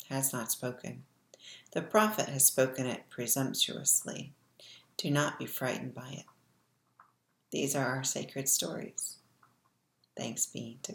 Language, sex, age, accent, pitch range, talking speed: English, female, 40-59, American, 130-155 Hz, 125 wpm